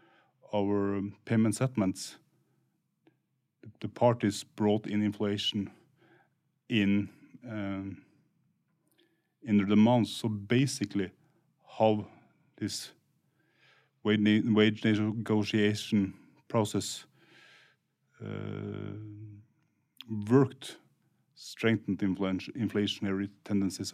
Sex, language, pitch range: male, English, 105-130 Hz